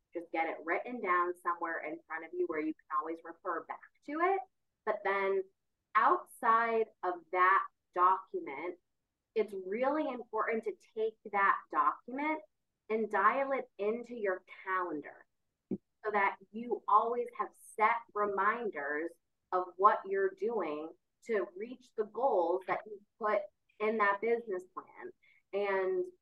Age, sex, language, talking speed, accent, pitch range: 20-39, female, English, 135 wpm, American, 175-220 Hz